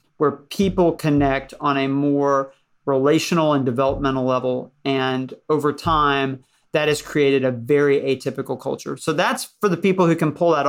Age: 40-59